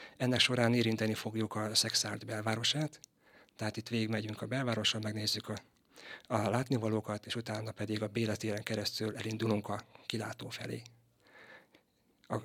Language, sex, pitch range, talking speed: Hungarian, male, 105-120 Hz, 135 wpm